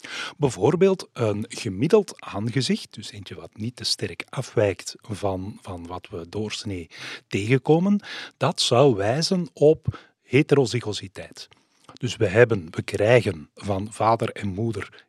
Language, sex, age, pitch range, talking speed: Dutch, male, 40-59, 100-130 Hz, 120 wpm